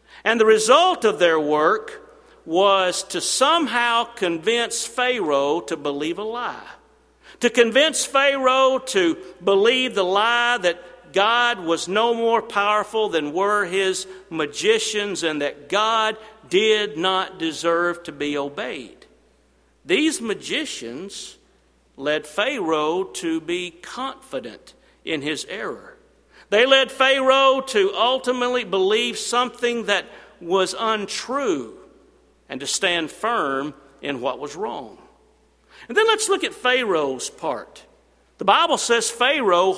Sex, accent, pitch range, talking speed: male, American, 185-255 Hz, 120 wpm